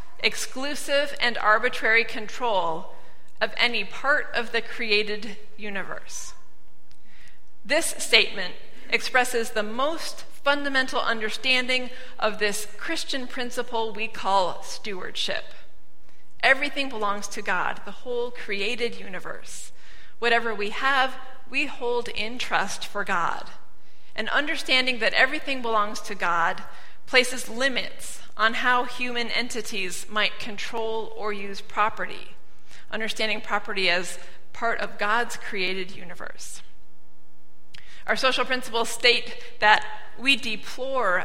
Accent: American